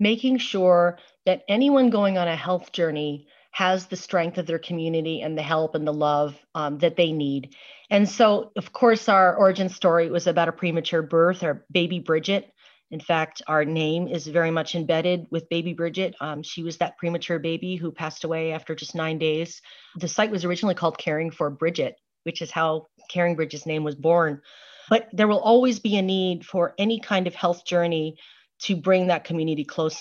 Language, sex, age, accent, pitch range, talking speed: English, female, 30-49, American, 160-195 Hz, 195 wpm